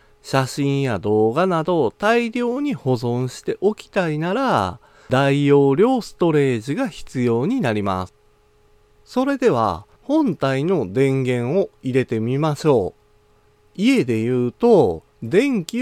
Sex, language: male, Japanese